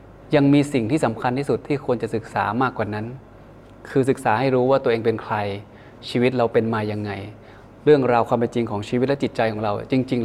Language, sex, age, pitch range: Thai, male, 20-39, 110-130 Hz